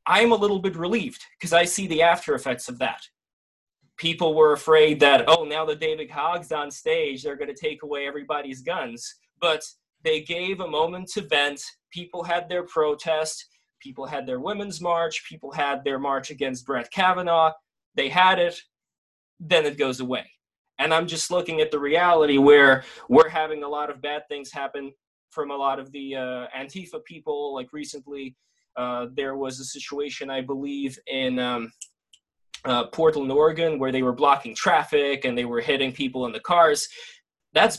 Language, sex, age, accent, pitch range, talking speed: English, male, 20-39, American, 140-180 Hz, 180 wpm